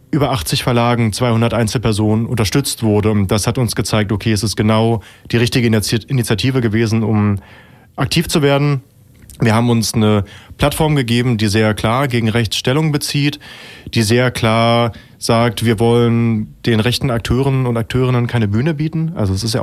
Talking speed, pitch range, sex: 165 wpm, 115-140 Hz, male